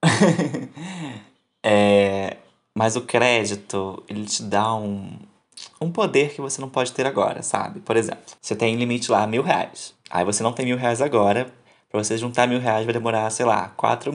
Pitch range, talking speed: 105-130 Hz, 175 wpm